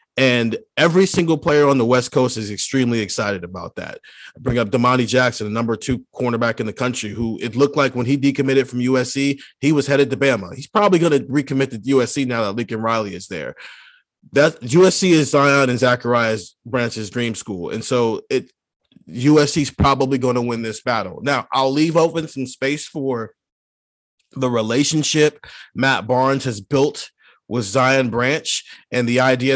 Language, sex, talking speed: English, male, 185 wpm